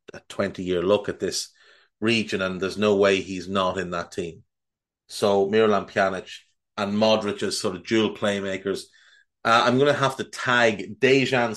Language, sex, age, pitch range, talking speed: English, male, 30-49, 100-125 Hz, 175 wpm